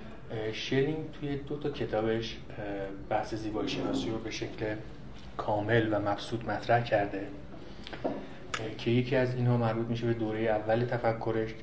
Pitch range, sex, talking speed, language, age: 105-120 Hz, male, 135 wpm, Persian, 30-49